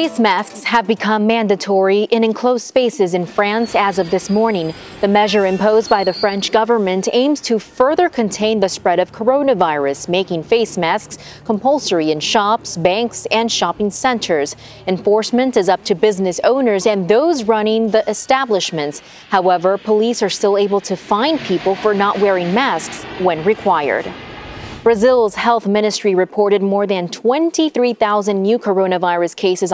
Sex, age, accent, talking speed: female, 30-49, American, 150 wpm